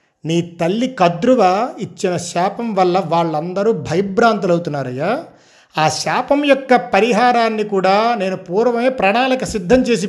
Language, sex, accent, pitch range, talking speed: Telugu, male, native, 170-225 Hz, 105 wpm